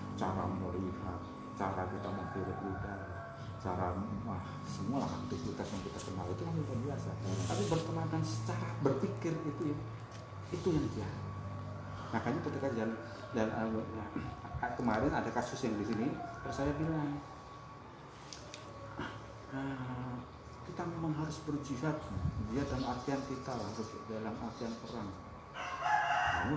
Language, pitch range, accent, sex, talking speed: Indonesian, 105-155 Hz, native, male, 120 wpm